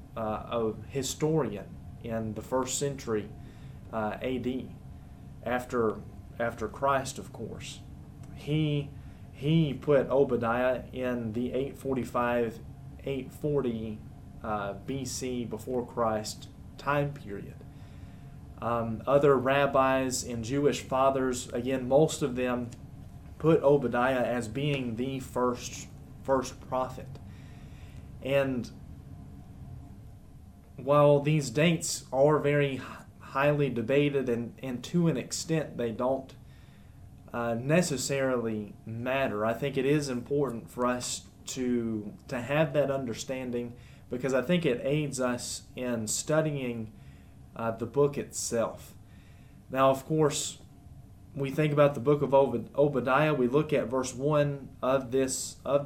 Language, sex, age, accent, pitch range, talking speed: English, male, 30-49, American, 115-140 Hz, 115 wpm